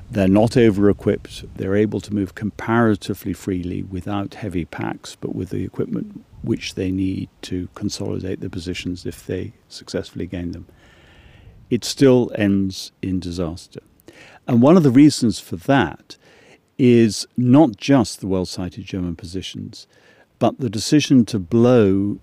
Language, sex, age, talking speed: English, male, 50-69, 140 wpm